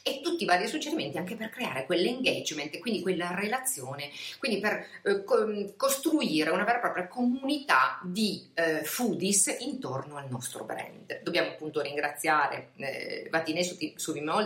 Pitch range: 160-220 Hz